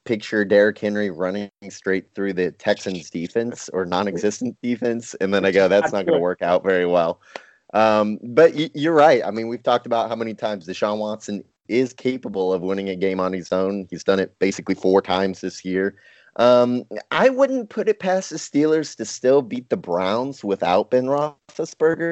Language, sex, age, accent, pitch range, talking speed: English, male, 30-49, American, 95-125 Hz, 195 wpm